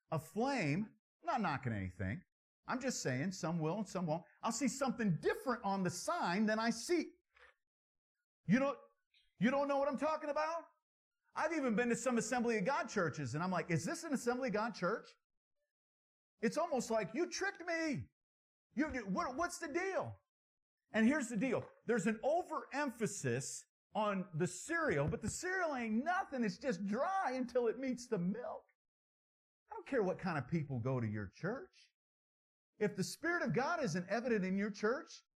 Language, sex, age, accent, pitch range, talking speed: English, male, 50-69, American, 175-265 Hz, 175 wpm